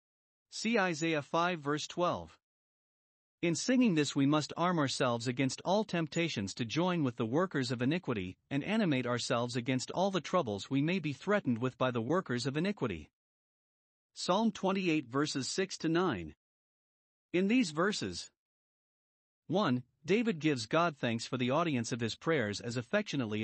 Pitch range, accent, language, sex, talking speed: 130-180 Hz, American, English, male, 155 wpm